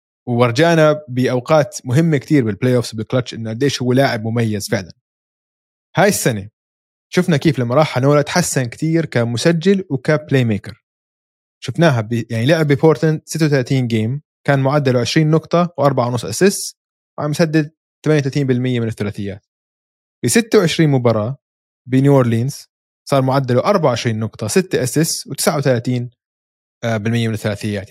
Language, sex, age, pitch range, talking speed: Arabic, male, 20-39, 115-160 Hz, 120 wpm